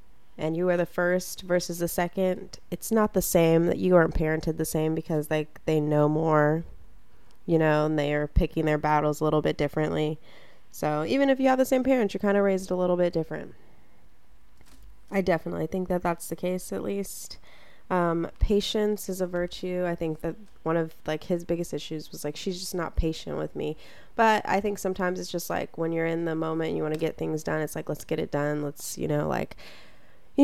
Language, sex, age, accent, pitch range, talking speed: English, female, 20-39, American, 155-190 Hz, 220 wpm